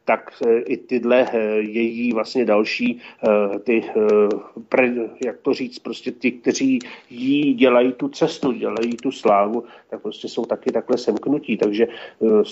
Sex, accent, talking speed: male, native, 160 wpm